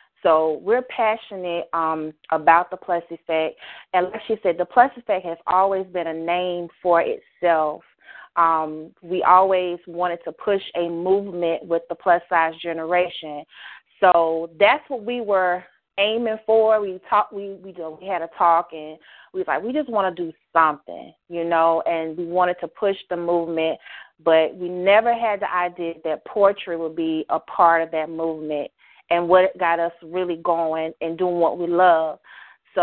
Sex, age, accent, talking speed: female, 30-49, American, 175 wpm